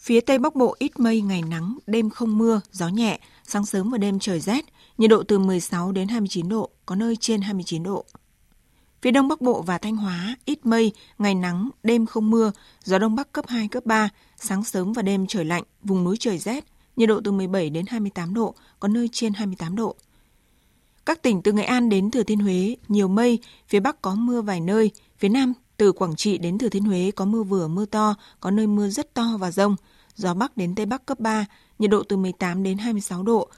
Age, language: 20-39, Vietnamese